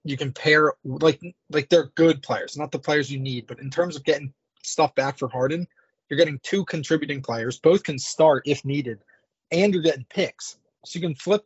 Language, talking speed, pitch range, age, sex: English, 210 wpm, 135-170 Hz, 20-39, male